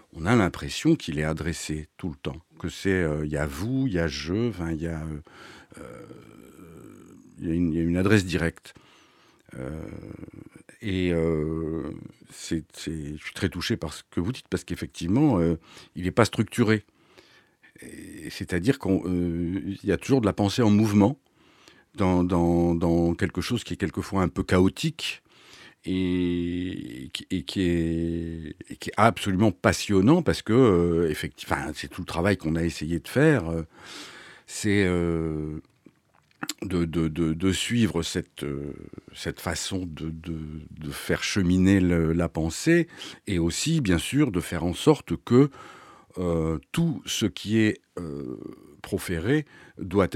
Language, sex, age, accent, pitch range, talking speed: French, male, 60-79, French, 80-100 Hz, 160 wpm